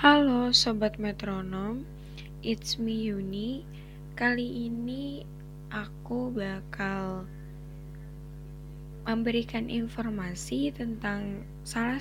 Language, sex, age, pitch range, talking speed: Indonesian, female, 10-29, 150-215 Hz, 70 wpm